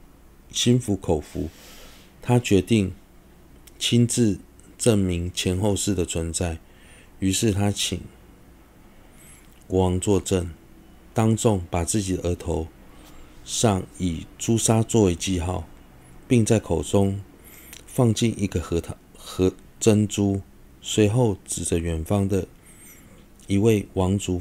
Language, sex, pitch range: Chinese, male, 85-105 Hz